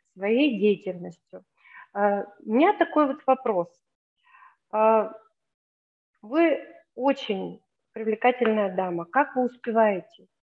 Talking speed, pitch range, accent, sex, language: 80 wpm, 210-270 Hz, native, female, Russian